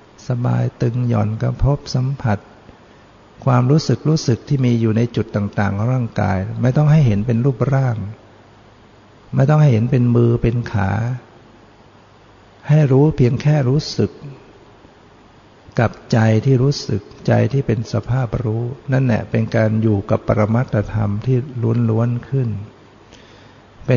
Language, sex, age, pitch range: Thai, male, 60-79, 105-125 Hz